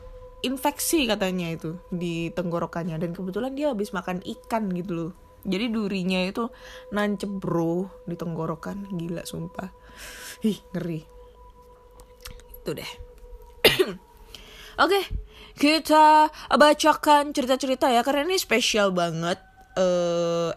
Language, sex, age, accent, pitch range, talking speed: Indonesian, female, 20-39, native, 180-295 Hz, 110 wpm